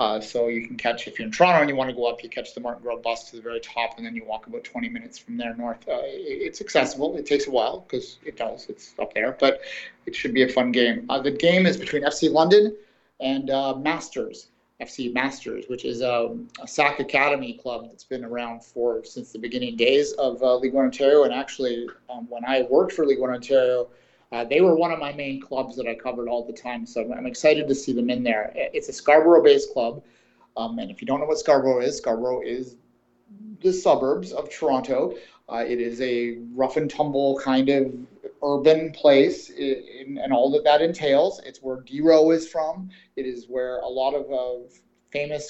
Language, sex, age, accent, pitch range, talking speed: English, male, 30-49, American, 125-150 Hz, 220 wpm